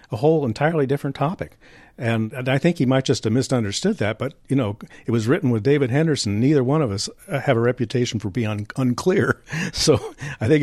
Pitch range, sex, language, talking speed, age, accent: 110-140 Hz, male, English, 215 wpm, 50-69, American